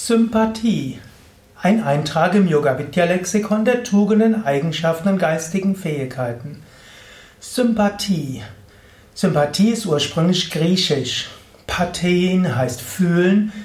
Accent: German